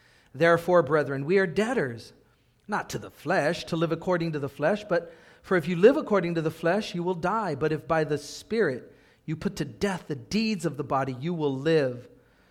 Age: 40-59